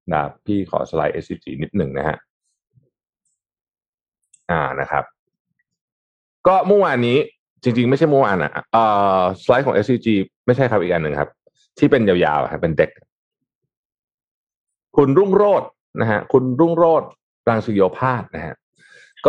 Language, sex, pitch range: Thai, male, 90-140 Hz